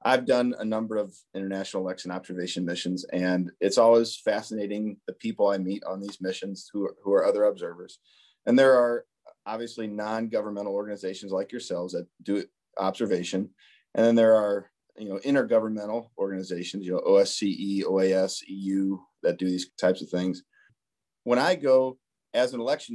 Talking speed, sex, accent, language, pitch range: 160 wpm, male, American, English, 100-120 Hz